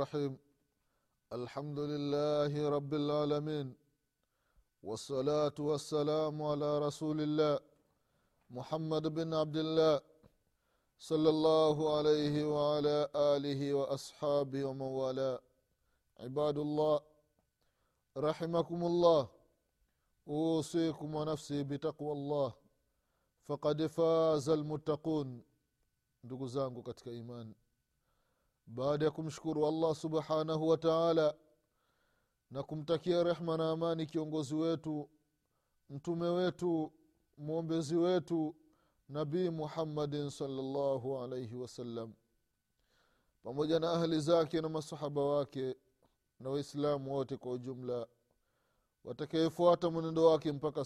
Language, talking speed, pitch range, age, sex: Swahili, 85 wpm, 135-155 Hz, 30-49, male